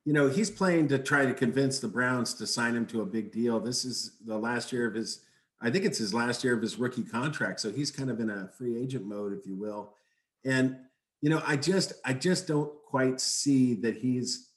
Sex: male